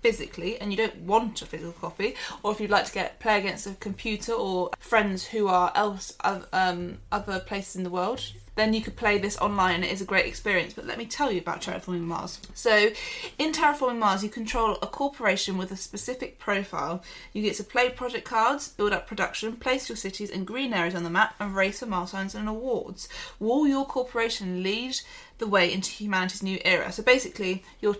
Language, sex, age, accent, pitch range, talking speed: English, female, 20-39, British, 185-225 Hz, 210 wpm